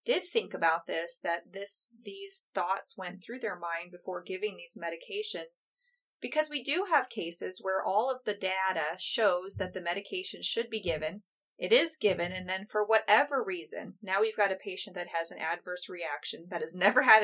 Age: 30-49